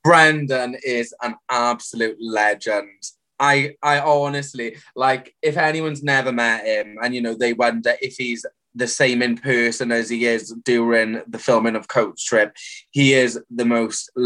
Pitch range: 115-135 Hz